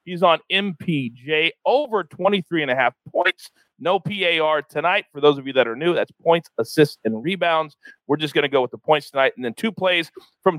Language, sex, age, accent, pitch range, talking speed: English, male, 40-59, American, 155-230 Hz, 200 wpm